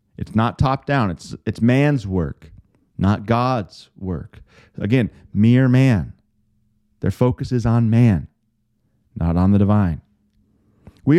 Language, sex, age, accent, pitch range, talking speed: English, male, 40-59, American, 100-140 Hz, 125 wpm